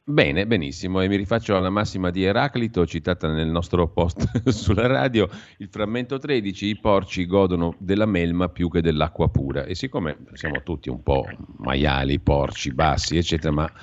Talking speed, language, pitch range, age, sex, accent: 165 wpm, Italian, 75-95 Hz, 40-59, male, native